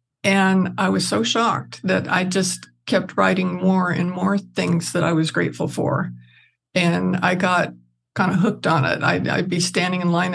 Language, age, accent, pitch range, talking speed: English, 60-79, American, 175-215 Hz, 190 wpm